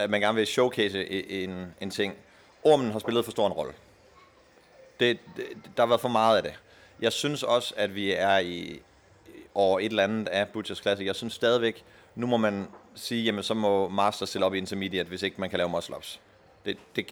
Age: 30-49